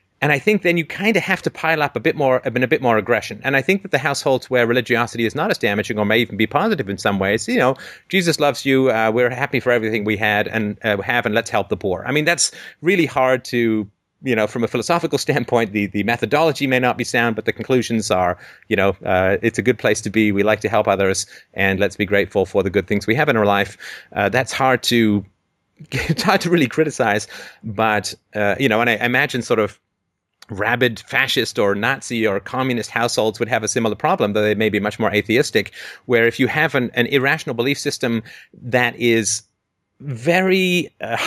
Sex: male